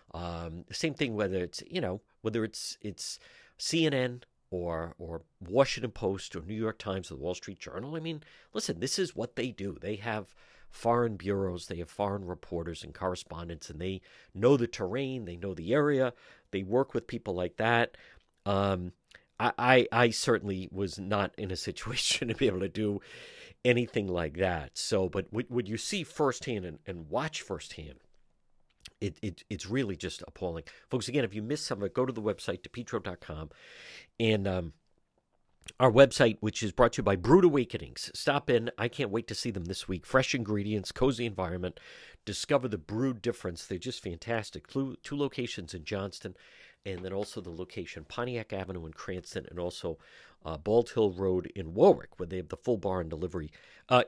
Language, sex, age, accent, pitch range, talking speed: English, male, 50-69, American, 90-120 Hz, 190 wpm